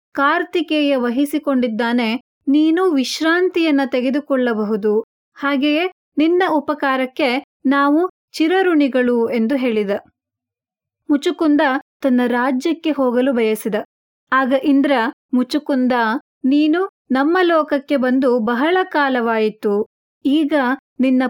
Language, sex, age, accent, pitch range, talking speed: Kannada, female, 30-49, native, 250-300 Hz, 80 wpm